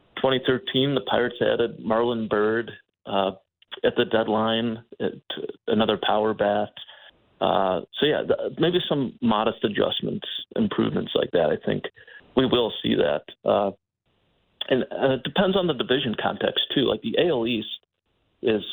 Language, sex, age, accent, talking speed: English, male, 30-49, American, 145 wpm